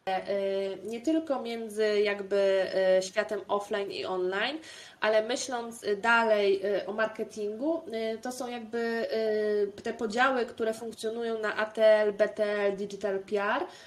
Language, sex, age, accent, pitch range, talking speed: Polish, female, 20-39, native, 195-240 Hz, 110 wpm